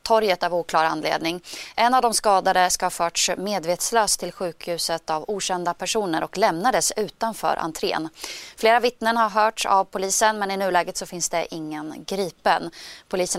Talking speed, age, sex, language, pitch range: 155 wpm, 20-39, female, Swedish, 170-210 Hz